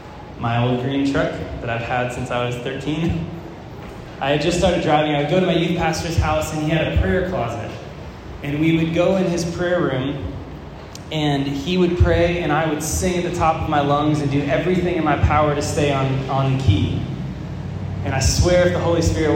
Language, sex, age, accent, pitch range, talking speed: English, male, 20-39, American, 125-160 Hz, 215 wpm